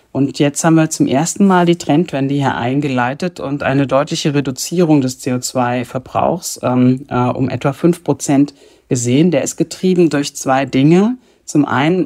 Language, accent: English, German